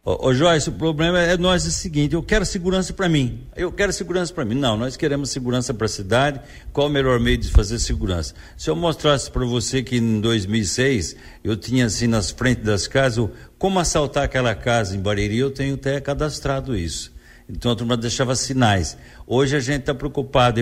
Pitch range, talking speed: 105-135 Hz, 205 wpm